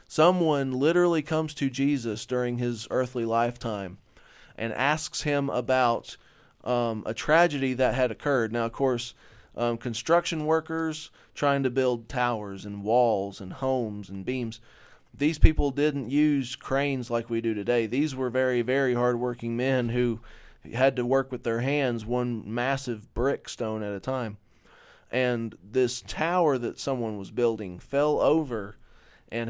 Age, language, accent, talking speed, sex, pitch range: 20-39, English, American, 150 wpm, male, 110-135 Hz